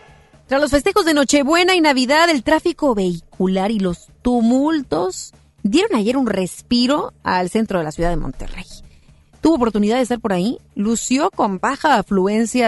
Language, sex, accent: Spanish, female, Mexican